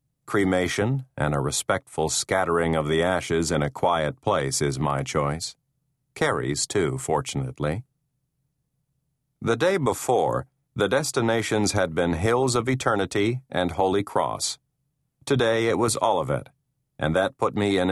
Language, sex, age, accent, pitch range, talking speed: English, male, 50-69, American, 85-135 Hz, 135 wpm